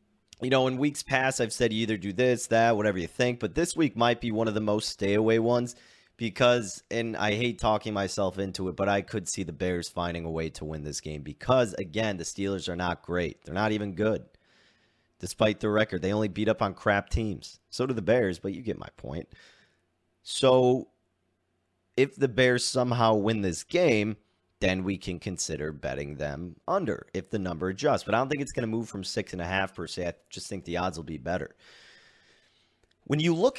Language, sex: English, male